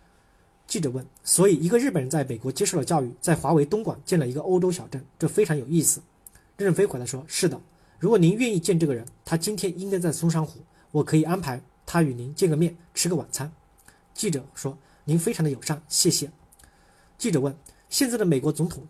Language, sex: Chinese, male